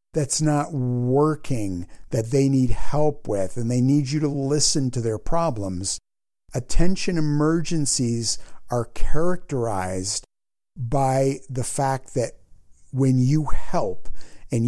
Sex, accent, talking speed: male, American, 120 wpm